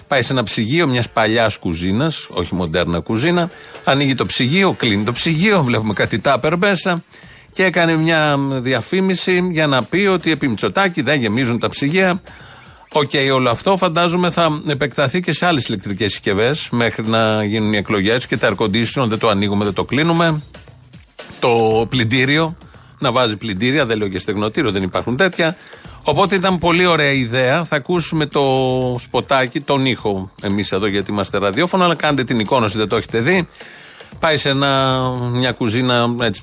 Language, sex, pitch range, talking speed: Greek, male, 110-160 Hz, 170 wpm